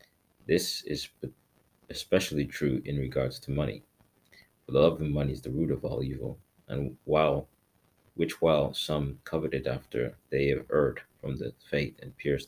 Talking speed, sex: 165 wpm, male